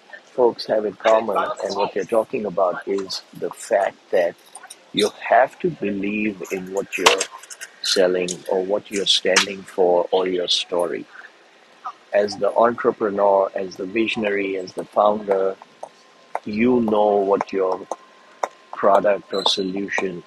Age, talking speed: 50-69, 135 wpm